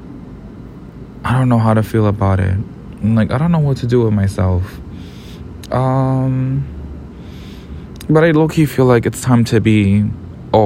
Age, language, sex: 20-39, English, male